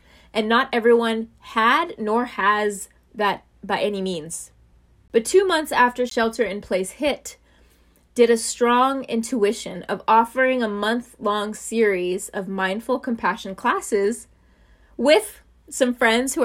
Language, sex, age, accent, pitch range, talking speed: English, female, 20-39, American, 190-240 Hz, 130 wpm